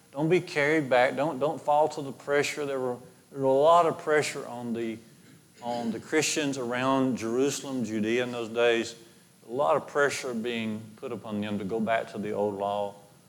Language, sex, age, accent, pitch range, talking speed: English, male, 40-59, American, 110-155 Hz, 200 wpm